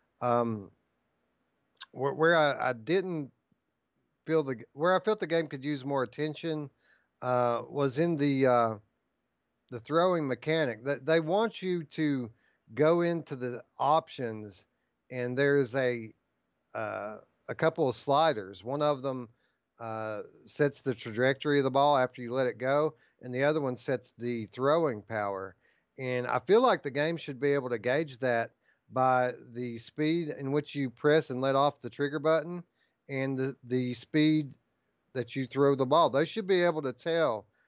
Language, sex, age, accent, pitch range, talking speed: English, male, 40-59, American, 120-150 Hz, 165 wpm